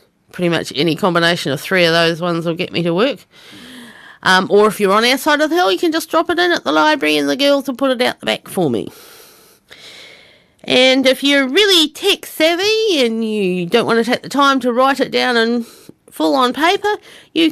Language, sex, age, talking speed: English, female, 40-59, 230 wpm